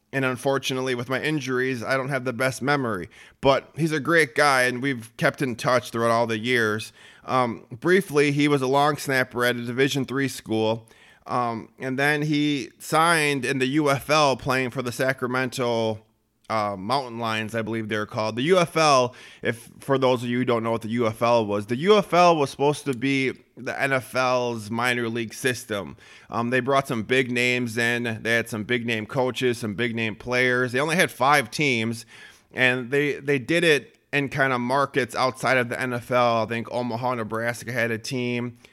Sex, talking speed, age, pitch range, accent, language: male, 190 wpm, 30-49, 115-135 Hz, American, English